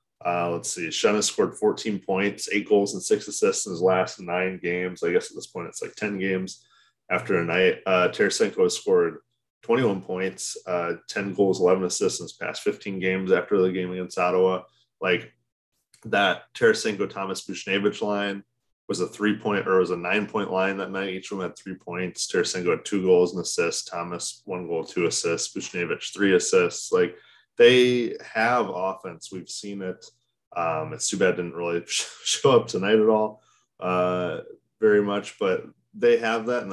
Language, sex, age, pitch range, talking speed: English, male, 20-39, 90-115 Hz, 190 wpm